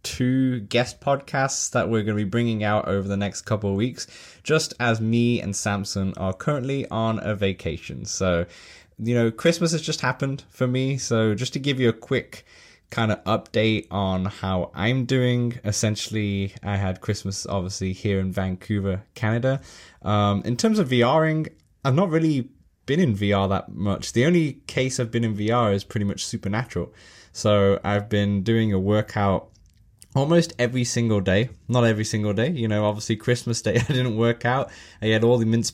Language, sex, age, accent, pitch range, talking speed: English, male, 20-39, British, 100-120 Hz, 185 wpm